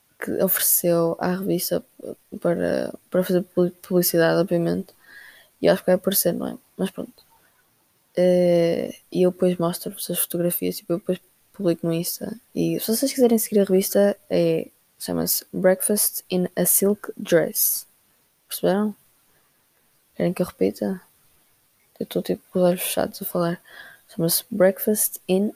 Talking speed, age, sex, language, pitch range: 140 wpm, 20-39, female, Portuguese, 170-200 Hz